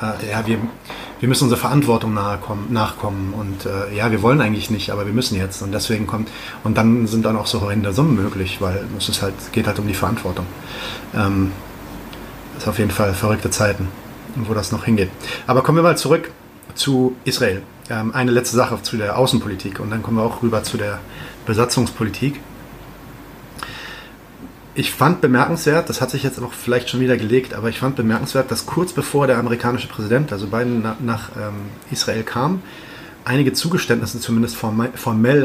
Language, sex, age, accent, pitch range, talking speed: German, male, 30-49, German, 105-125 Hz, 175 wpm